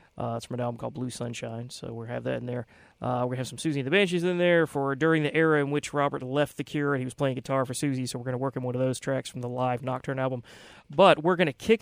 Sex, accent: male, American